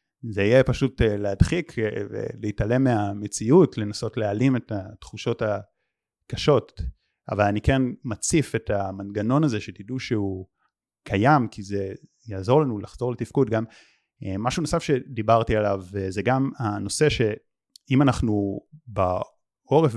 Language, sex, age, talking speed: Hebrew, male, 30-49, 115 wpm